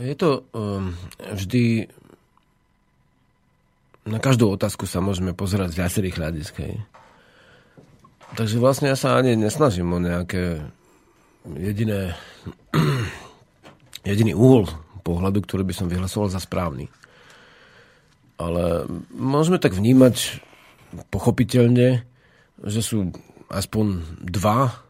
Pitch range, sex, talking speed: 90-115 Hz, male, 95 wpm